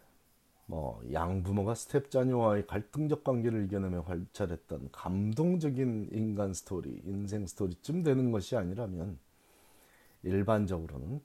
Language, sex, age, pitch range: Korean, male, 40-59, 85-120 Hz